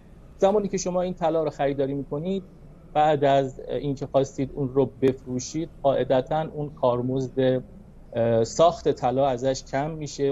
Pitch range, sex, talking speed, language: 135-170 Hz, male, 135 wpm, Persian